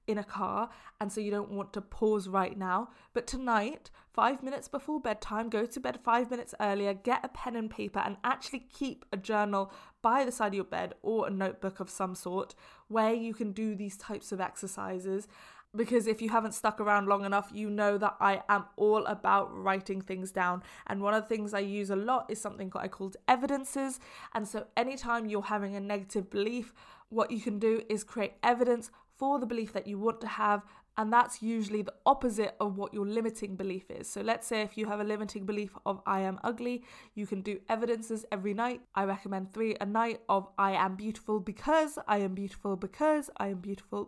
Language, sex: English, female